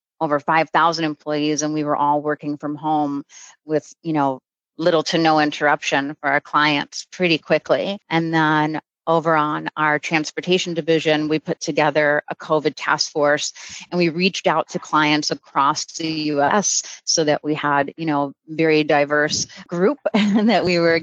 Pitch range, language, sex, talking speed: 155-175 Hz, English, female, 165 wpm